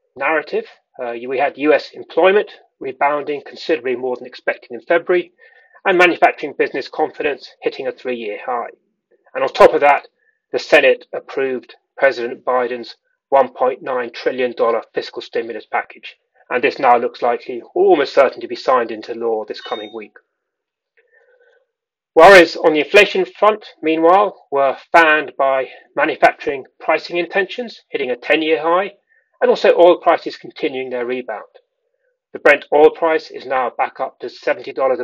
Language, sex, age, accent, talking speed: English, male, 30-49, British, 145 wpm